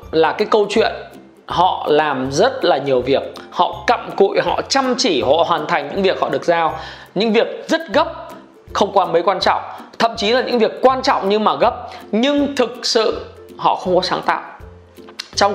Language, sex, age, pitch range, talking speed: Vietnamese, male, 20-39, 165-245 Hz, 200 wpm